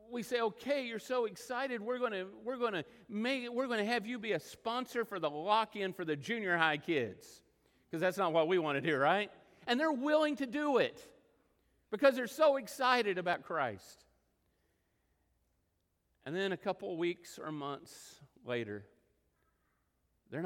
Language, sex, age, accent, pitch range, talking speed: English, male, 50-69, American, 160-240 Hz, 160 wpm